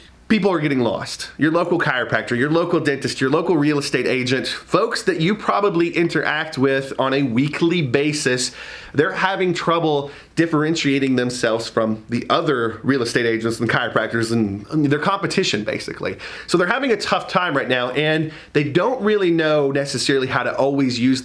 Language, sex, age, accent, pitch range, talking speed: English, male, 30-49, American, 130-175 Hz, 170 wpm